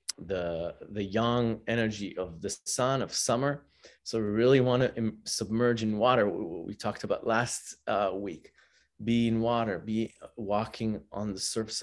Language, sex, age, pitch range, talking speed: English, male, 30-49, 100-125 Hz, 160 wpm